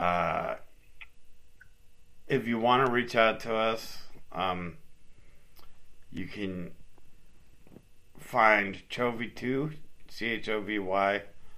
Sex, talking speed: male, 100 wpm